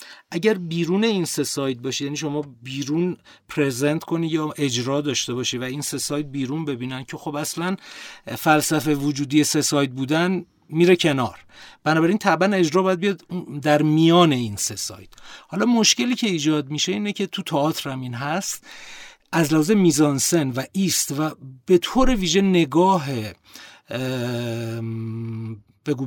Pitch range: 130-175 Hz